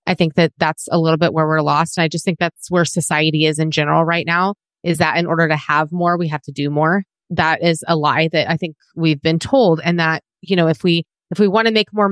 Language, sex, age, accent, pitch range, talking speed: English, female, 30-49, American, 155-190 Hz, 275 wpm